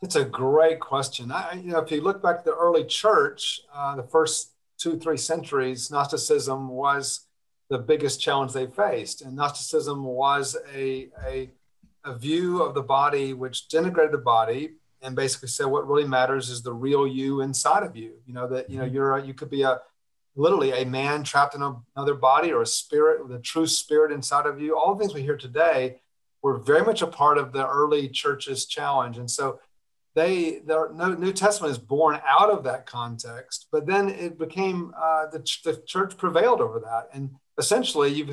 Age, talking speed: 40-59, 195 wpm